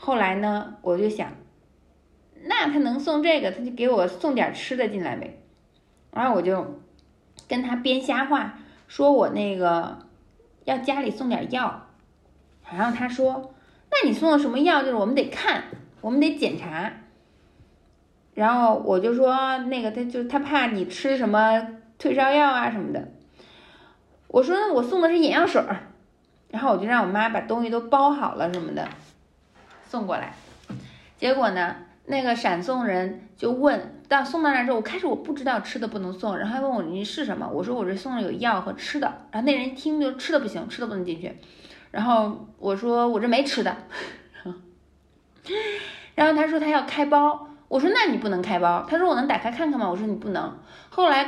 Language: Chinese